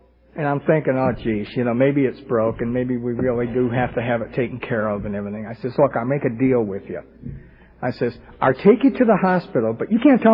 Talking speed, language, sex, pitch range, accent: 260 wpm, English, male, 130-185 Hz, American